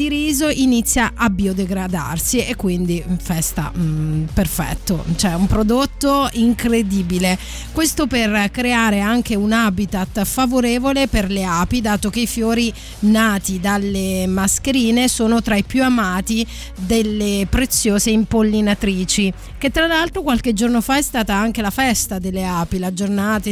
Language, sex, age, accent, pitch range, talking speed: Italian, female, 30-49, native, 190-230 Hz, 135 wpm